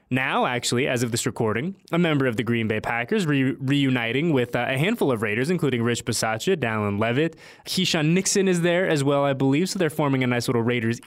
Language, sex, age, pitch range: English, male, 20-39, 115-145 Hz